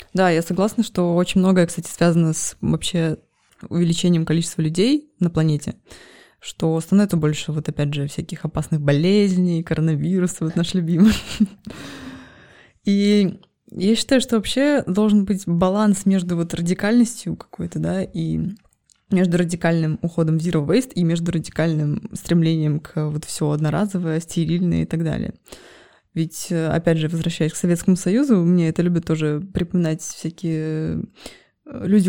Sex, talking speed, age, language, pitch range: female, 135 wpm, 20-39, Russian, 165-190 Hz